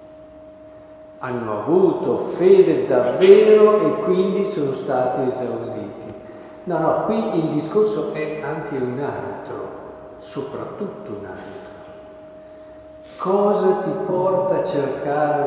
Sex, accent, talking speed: male, native, 100 wpm